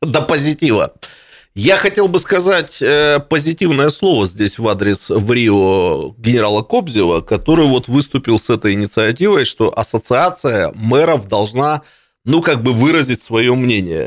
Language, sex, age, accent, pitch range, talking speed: Russian, male, 30-49, native, 110-155 Hz, 135 wpm